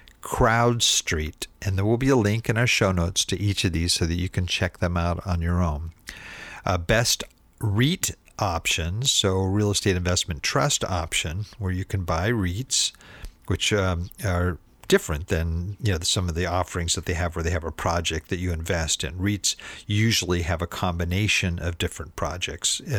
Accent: American